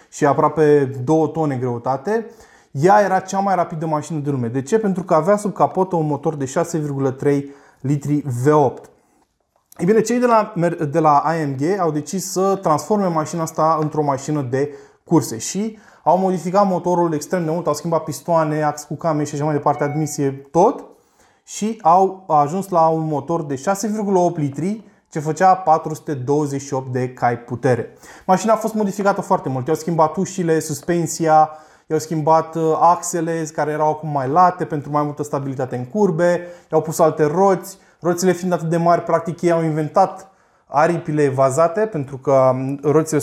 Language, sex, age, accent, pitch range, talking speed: Romanian, male, 20-39, native, 145-180 Hz, 165 wpm